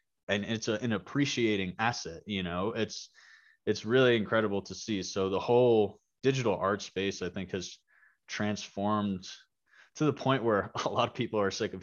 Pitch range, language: 100-120 Hz, English